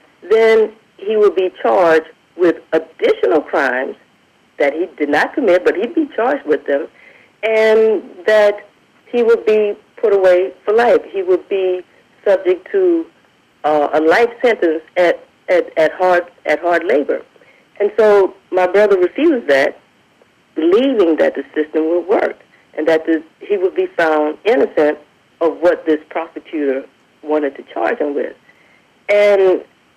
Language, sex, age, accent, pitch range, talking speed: English, female, 50-69, American, 160-270 Hz, 150 wpm